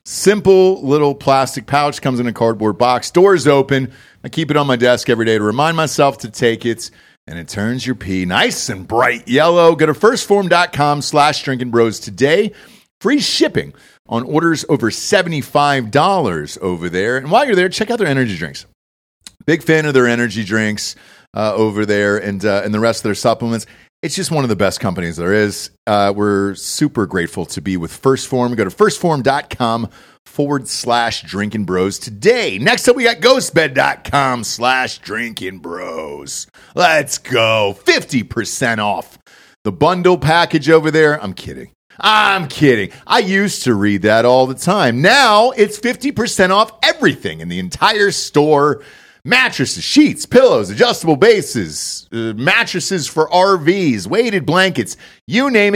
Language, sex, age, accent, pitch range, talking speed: English, male, 40-59, American, 110-185 Hz, 165 wpm